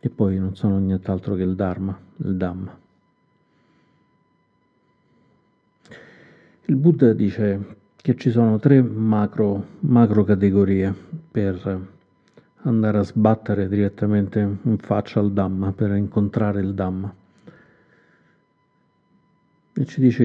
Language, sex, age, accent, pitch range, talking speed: Italian, male, 50-69, native, 95-110 Hz, 100 wpm